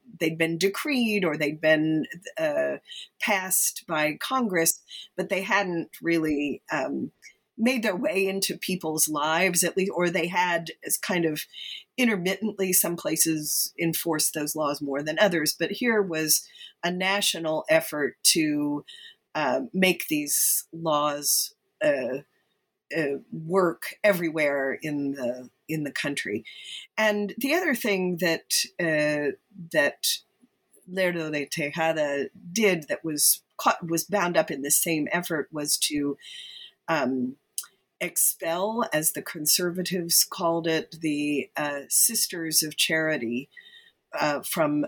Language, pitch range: English, 155-210 Hz